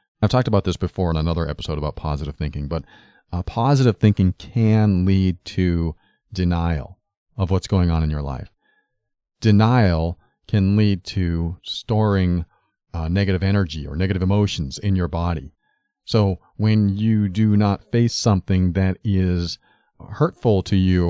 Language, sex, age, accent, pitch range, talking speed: English, male, 40-59, American, 90-125 Hz, 150 wpm